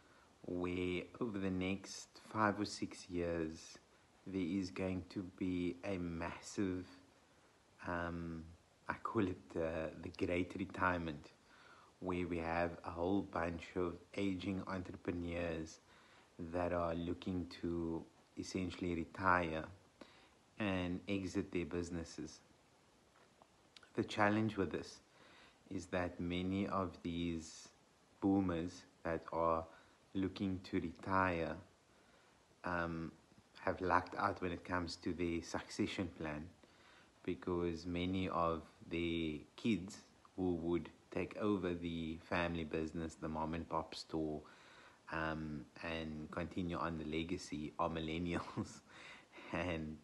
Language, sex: English, male